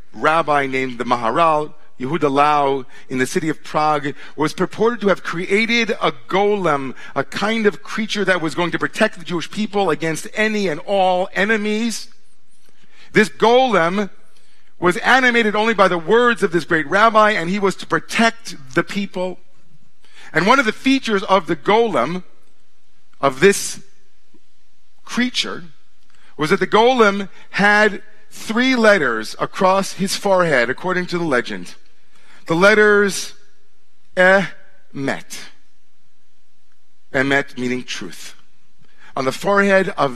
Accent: American